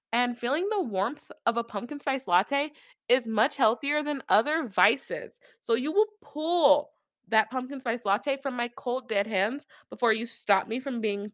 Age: 20-39